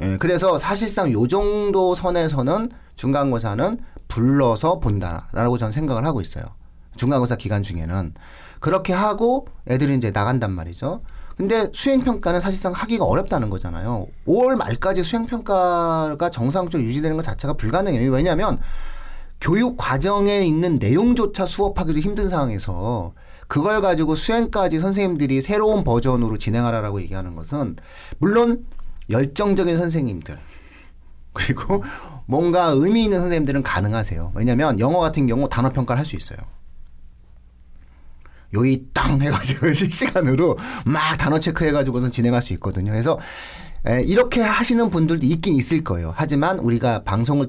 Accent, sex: native, male